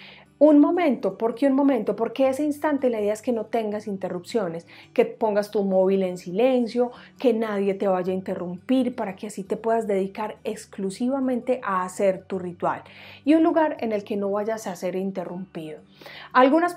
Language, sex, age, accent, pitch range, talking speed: Spanish, female, 30-49, Colombian, 190-245 Hz, 185 wpm